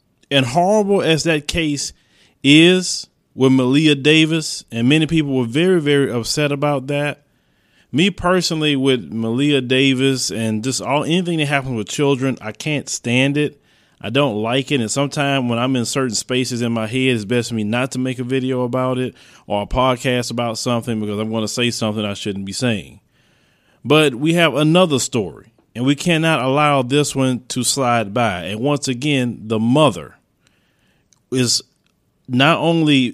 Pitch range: 115-145 Hz